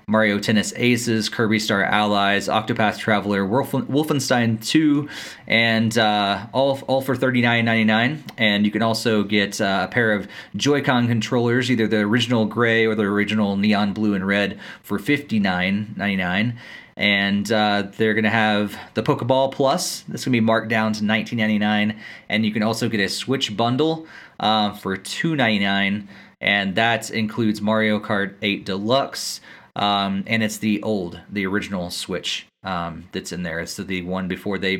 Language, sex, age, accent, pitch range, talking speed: English, male, 30-49, American, 105-120 Hz, 160 wpm